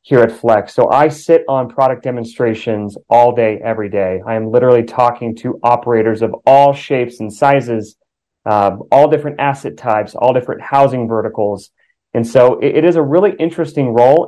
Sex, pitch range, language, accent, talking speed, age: male, 110-130 Hz, English, American, 175 wpm, 30-49